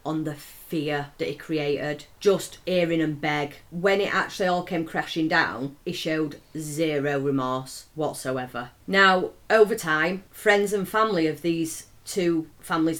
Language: English